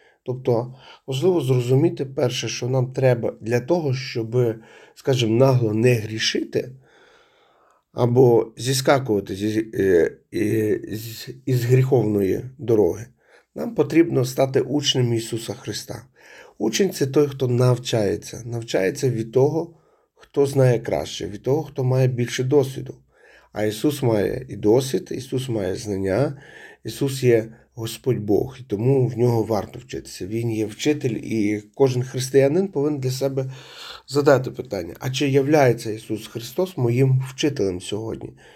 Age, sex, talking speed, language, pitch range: 40-59, male, 125 wpm, Ukrainian, 115-135 Hz